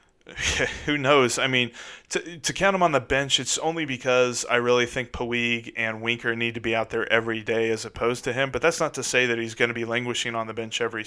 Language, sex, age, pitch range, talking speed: English, male, 30-49, 115-135 Hz, 255 wpm